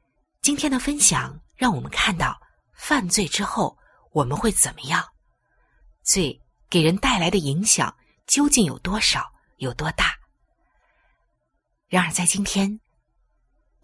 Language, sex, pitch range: Chinese, female, 180-255 Hz